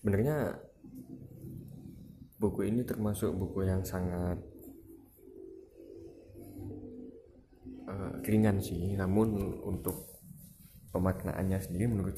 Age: 20-39